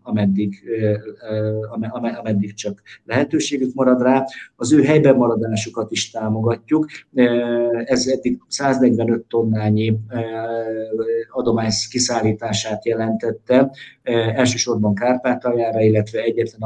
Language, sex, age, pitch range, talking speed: Hungarian, male, 50-69, 110-125 Hz, 85 wpm